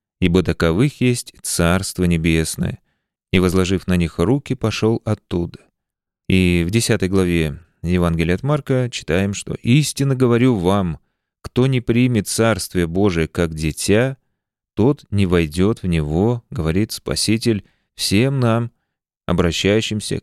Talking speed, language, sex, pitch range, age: 120 wpm, Russian, male, 85-115 Hz, 30-49